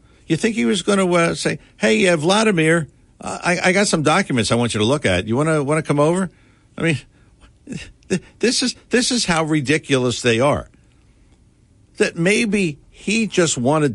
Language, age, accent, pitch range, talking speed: English, 60-79, American, 110-180 Hz, 175 wpm